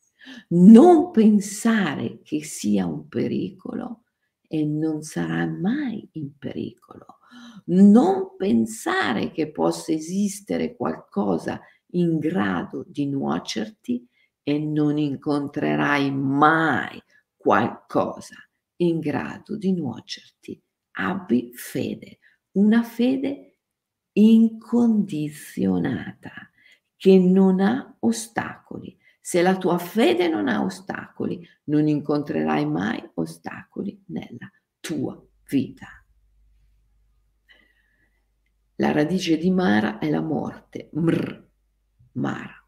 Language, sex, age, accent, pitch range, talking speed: Italian, female, 50-69, native, 150-230 Hz, 85 wpm